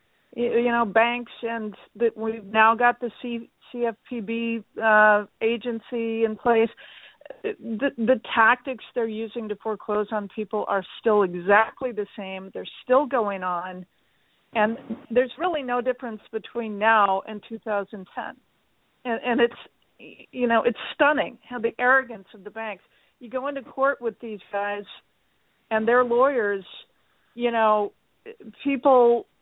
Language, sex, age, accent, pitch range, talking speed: English, female, 50-69, American, 210-250 Hz, 135 wpm